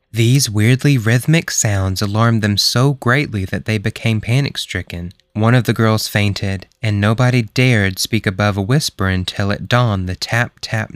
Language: English